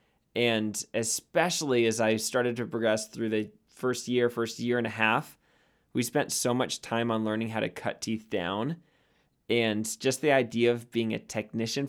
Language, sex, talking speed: English, male, 180 wpm